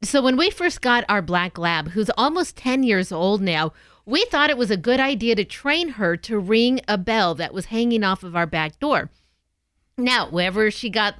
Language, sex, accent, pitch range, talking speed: English, female, American, 190-250 Hz, 215 wpm